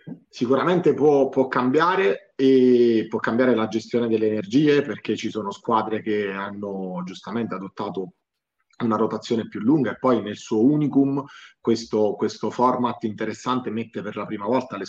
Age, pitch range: 30-49, 105-125 Hz